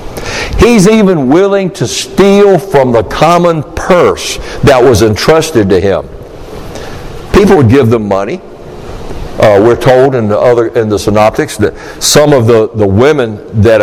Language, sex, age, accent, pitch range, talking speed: English, male, 60-79, American, 110-140 Hz, 150 wpm